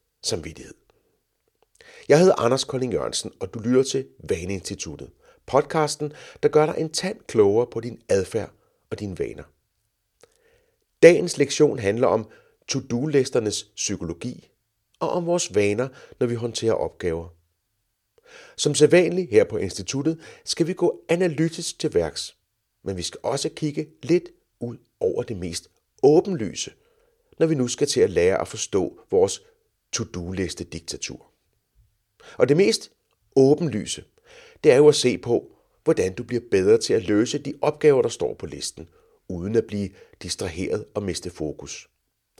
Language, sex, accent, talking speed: Danish, male, native, 145 wpm